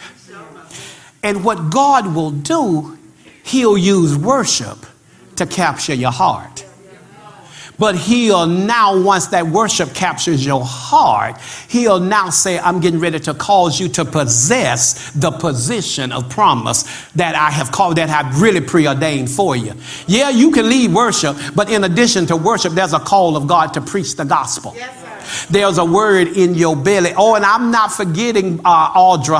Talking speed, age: 160 wpm, 50-69